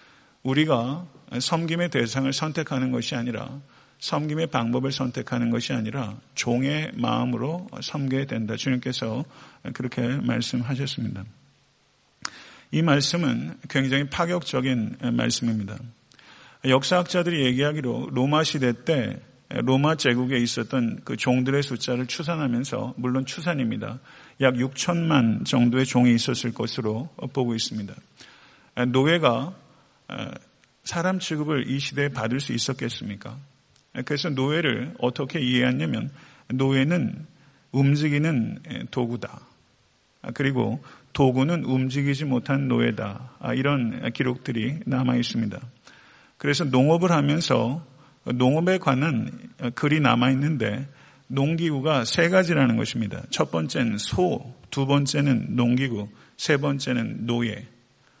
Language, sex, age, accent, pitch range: Korean, male, 50-69, native, 120-145 Hz